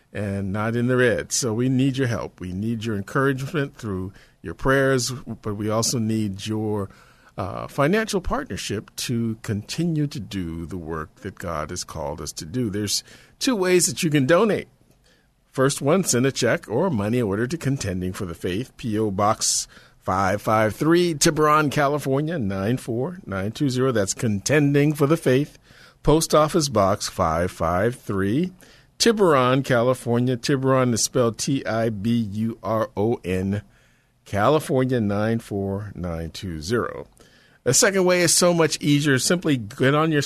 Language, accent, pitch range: English, American, 105-145 Hz